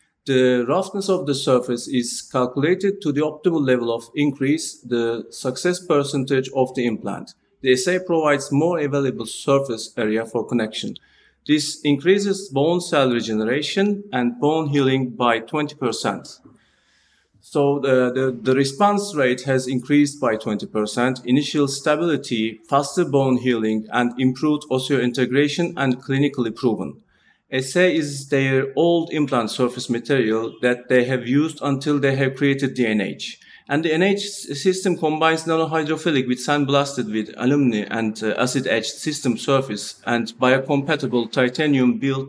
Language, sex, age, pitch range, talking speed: English, male, 40-59, 125-150 Hz, 130 wpm